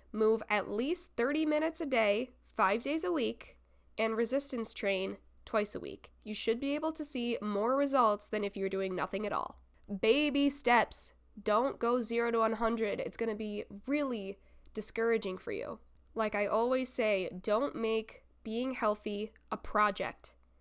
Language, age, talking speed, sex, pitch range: English, 10-29, 165 wpm, female, 205-260 Hz